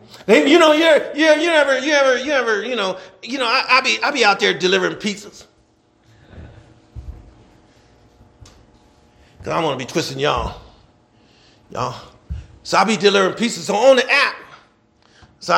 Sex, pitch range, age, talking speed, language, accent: male, 190-295 Hz, 40-59, 160 wpm, English, American